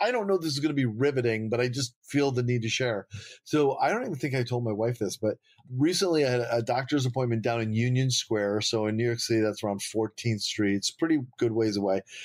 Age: 30-49